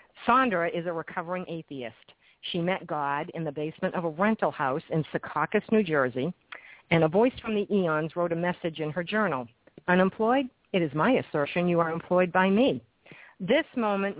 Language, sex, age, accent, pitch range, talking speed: English, female, 50-69, American, 155-190 Hz, 180 wpm